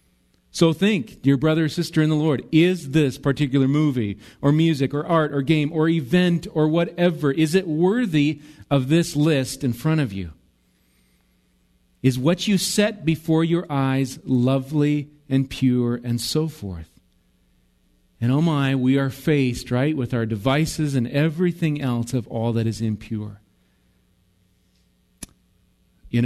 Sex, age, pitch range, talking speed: male, 40-59, 105-145 Hz, 150 wpm